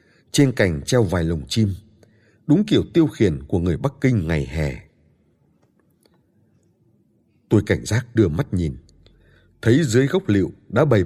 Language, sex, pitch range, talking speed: Vietnamese, male, 90-120 Hz, 150 wpm